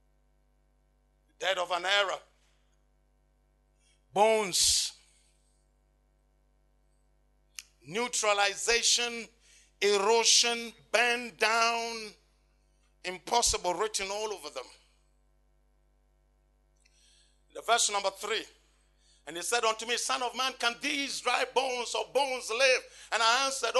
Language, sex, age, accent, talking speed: English, male, 50-69, Nigerian, 90 wpm